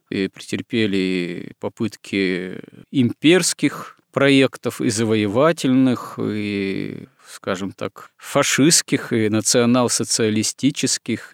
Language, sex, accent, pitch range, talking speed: Russian, male, native, 105-130 Hz, 70 wpm